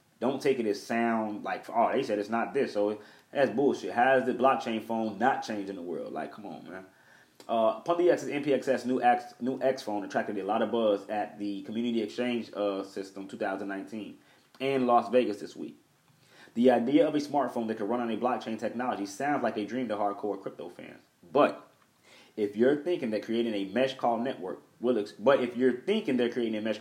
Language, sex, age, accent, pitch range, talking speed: English, male, 20-39, American, 105-135 Hz, 215 wpm